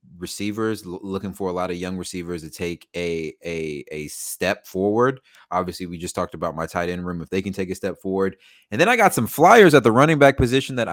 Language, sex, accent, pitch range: English, male, American, 80-115 Hz